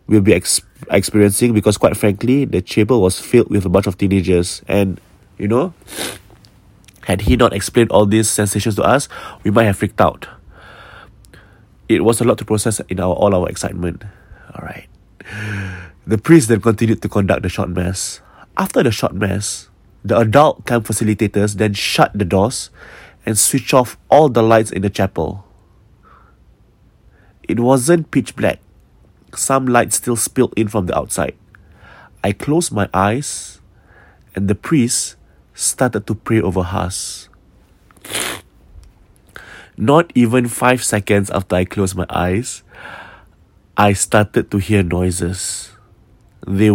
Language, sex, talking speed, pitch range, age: English, male, 145 wpm, 95-115 Hz, 20-39